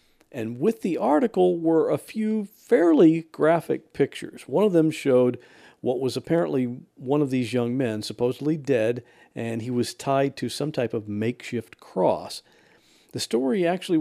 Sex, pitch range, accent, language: male, 115-160 Hz, American, English